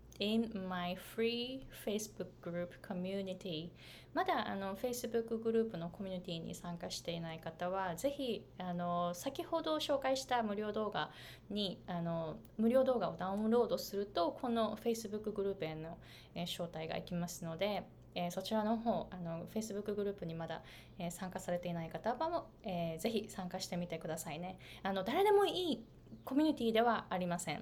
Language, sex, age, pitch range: Japanese, female, 20-39, 180-255 Hz